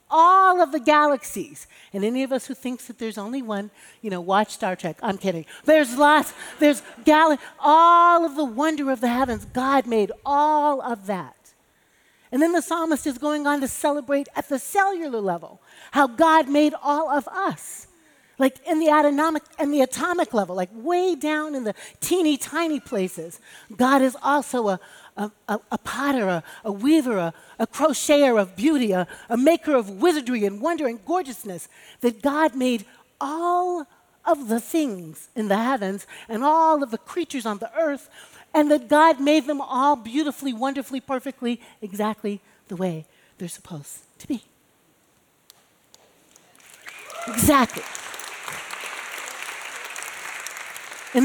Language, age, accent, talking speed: English, 40-59, American, 155 wpm